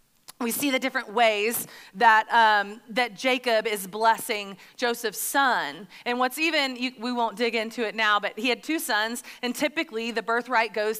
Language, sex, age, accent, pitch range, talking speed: English, female, 30-49, American, 210-265 Hz, 180 wpm